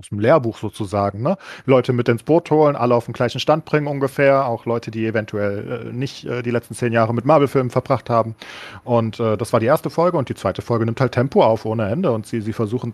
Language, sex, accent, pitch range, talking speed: German, male, German, 110-130 Hz, 245 wpm